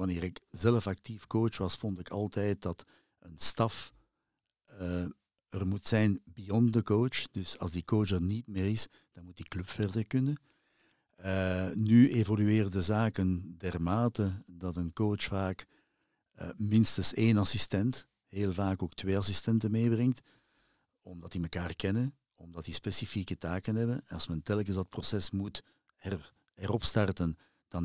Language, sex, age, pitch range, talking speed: Dutch, male, 60-79, 90-110 Hz, 155 wpm